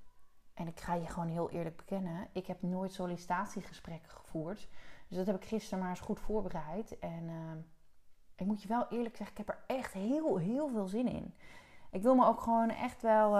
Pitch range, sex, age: 165-210 Hz, female, 30-49